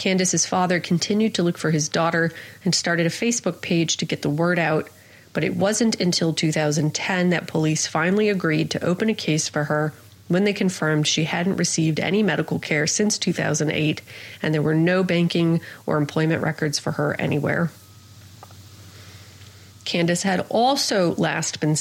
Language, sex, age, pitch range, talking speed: English, female, 30-49, 150-185 Hz, 165 wpm